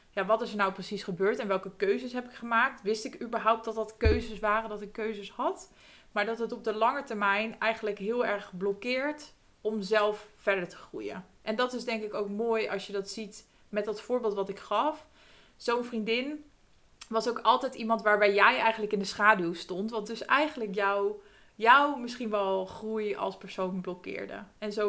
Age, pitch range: 20-39, 195-230 Hz